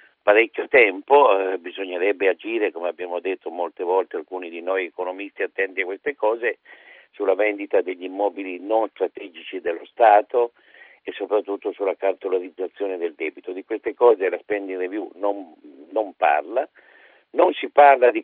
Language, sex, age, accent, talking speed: Italian, male, 50-69, native, 150 wpm